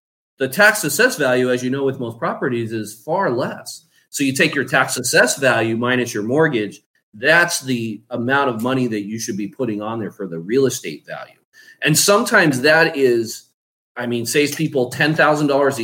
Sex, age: male, 30-49